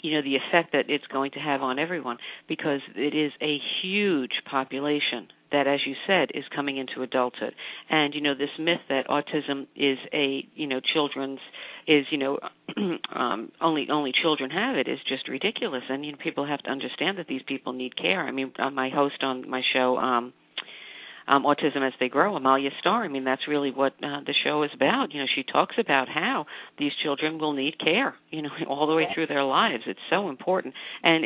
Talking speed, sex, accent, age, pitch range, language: 210 wpm, female, American, 50-69, 135-155 Hz, English